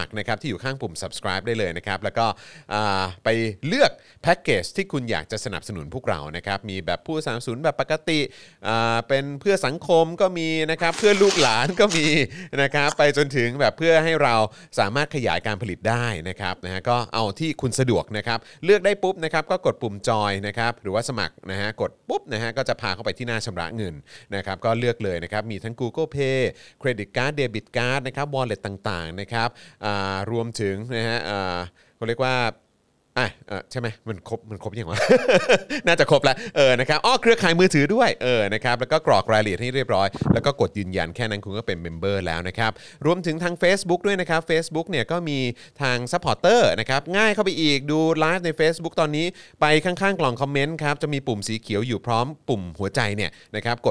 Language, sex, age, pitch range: Thai, male, 30-49, 105-145 Hz